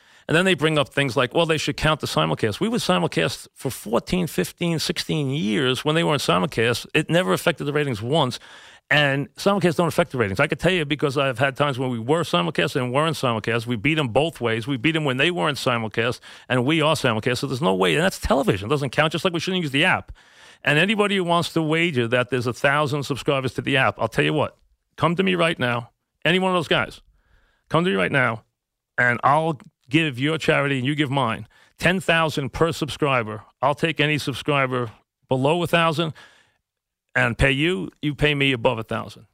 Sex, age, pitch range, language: male, 40-59, 125-160 Hz, English